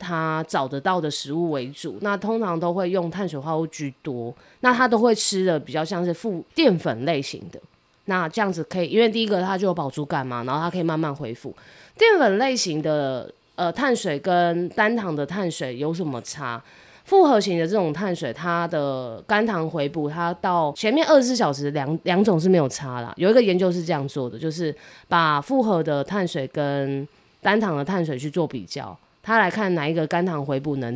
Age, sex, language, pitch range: 20-39, female, Chinese, 145-200 Hz